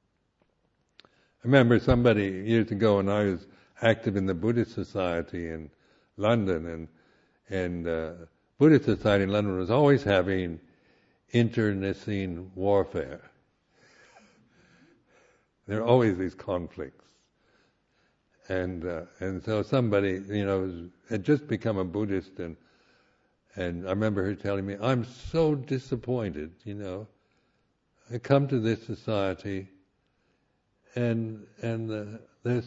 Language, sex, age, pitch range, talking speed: English, male, 60-79, 95-120 Hz, 120 wpm